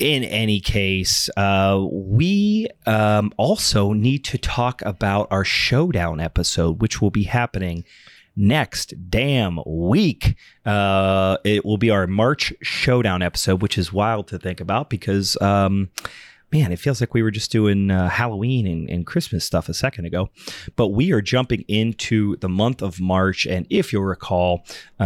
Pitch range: 95-115 Hz